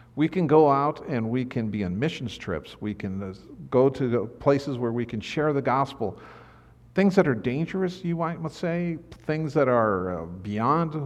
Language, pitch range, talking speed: English, 105-140 Hz, 185 wpm